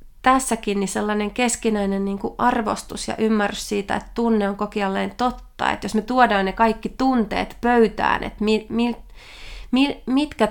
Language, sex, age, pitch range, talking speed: Finnish, female, 30-49, 200-250 Hz, 130 wpm